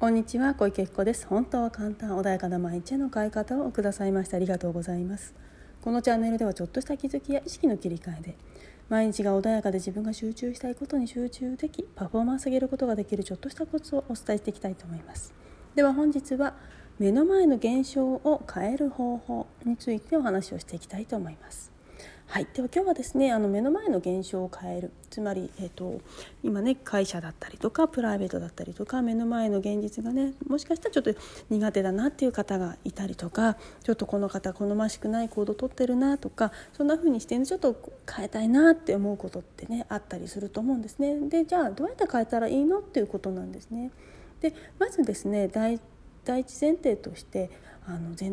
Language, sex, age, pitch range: Japanese, female, 40-59, 200-270 Hz